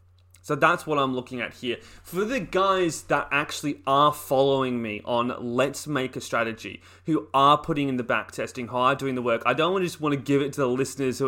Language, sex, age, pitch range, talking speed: English, male, 20-39, 110-145 Hz, 225 wpm